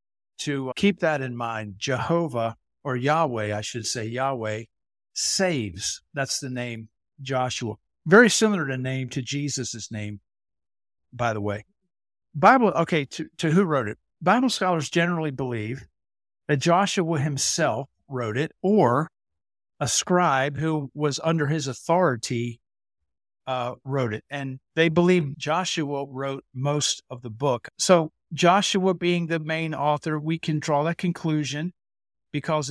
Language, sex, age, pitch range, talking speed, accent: English, male, 60-79, 120-165 Hz, 140 wpm, American